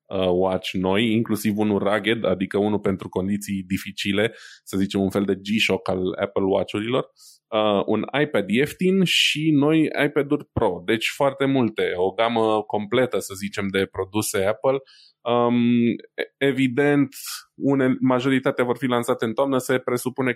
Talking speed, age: 145 wpm, 20-39